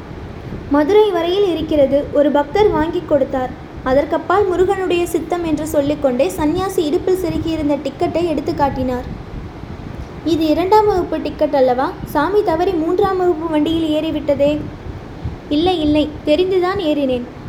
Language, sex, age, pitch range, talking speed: English, female, 20-39, 295-365 Hz, 115 wpm